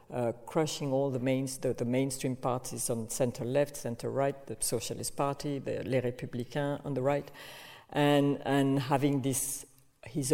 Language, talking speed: English, 165 wpm